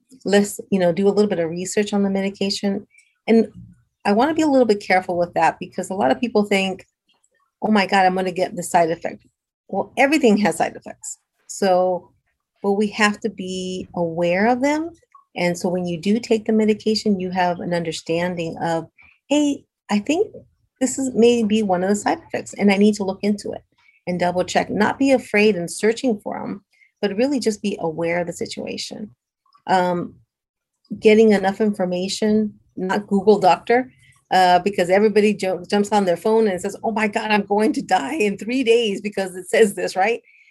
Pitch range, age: 185-225 Hz, 40-59